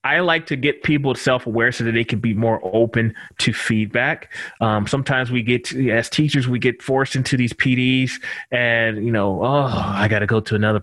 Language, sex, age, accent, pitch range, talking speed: English, male, 30-49, American, 115-160 Hz, 210 wpm